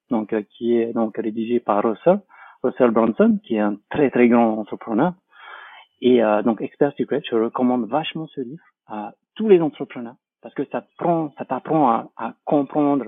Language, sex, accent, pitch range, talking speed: French, male, French, 115-160 Hz, 185 wpm